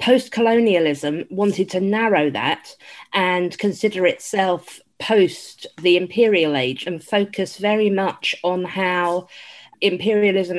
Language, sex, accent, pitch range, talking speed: English, female, British, 175-205 Hz, 110 wpm